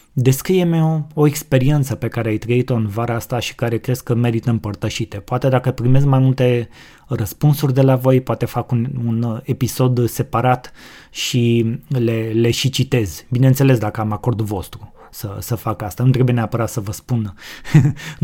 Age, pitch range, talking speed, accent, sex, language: 20-39, 110-135 Hz, 175 wpm, native, male, Romanian